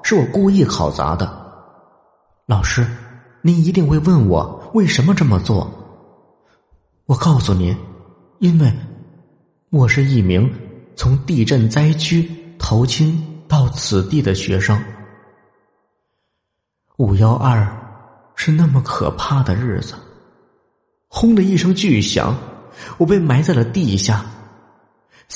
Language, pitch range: Chinese, 110-170 Hz